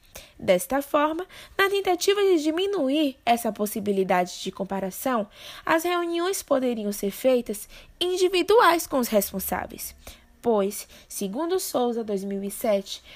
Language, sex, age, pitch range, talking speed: Portuguese, female, 10-29, 220-330 Hz, 105 wpm